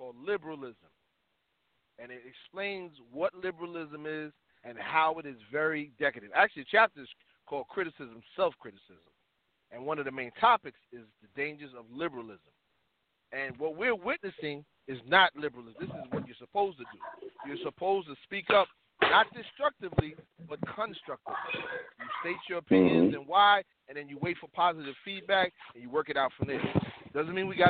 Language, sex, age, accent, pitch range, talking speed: English, male, 40-59, American, 140-185 Hz, 175 wpm